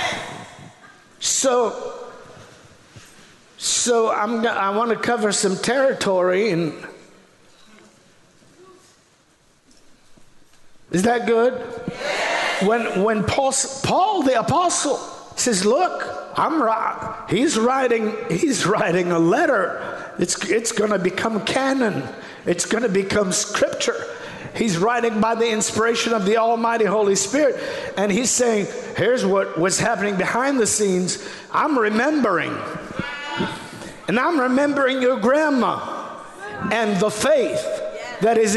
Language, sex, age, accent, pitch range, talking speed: English, male, 50-69, American, 215-290 Hz, 115 wpm